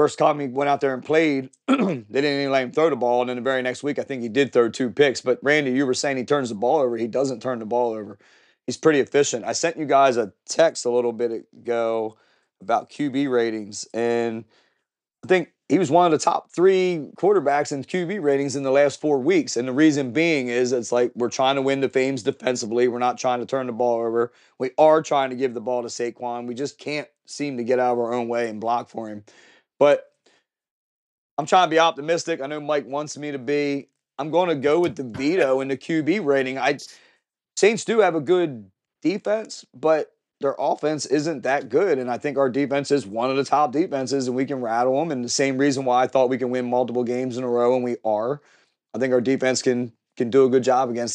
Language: English